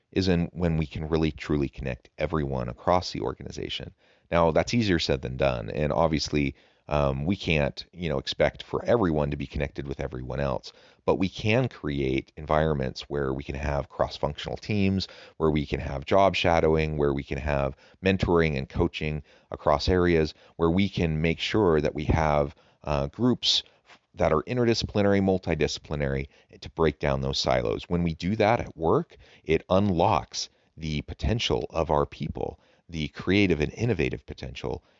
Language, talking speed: English, 165 wpm